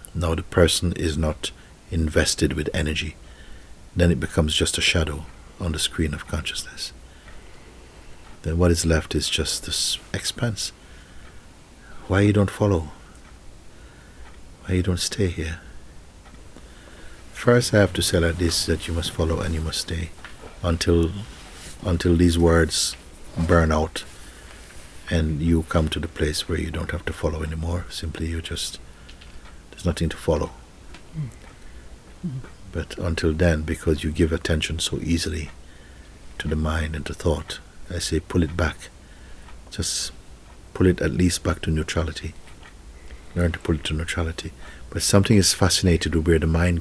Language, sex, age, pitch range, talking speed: English, male, 60-79, 75-90 Hz, 155 wpm